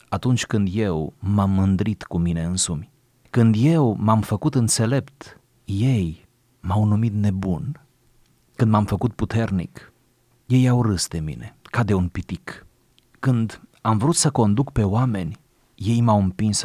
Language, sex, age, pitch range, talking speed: Romanian, male, 30-49, 95-125 Hz, 145 wpm